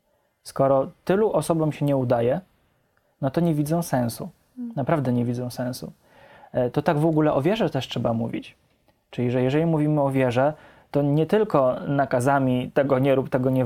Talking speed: 170 wpm